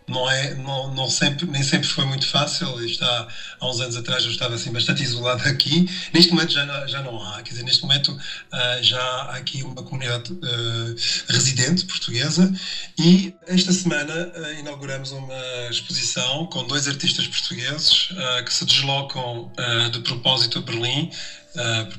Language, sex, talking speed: Portuguese, male, 170 wpm